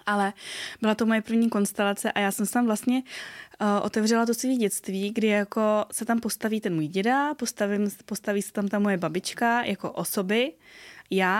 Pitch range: 190-220 Hz